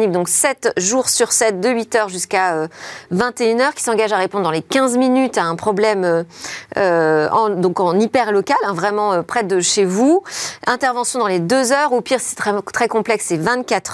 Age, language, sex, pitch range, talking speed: 40-59, French, female, 195-260 Hz, 200 wpm